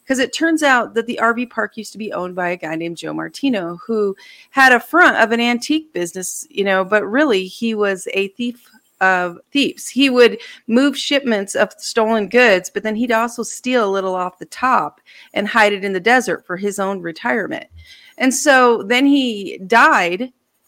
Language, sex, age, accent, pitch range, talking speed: English, female, 40-59, American, 185-245 Hz, 195 wpm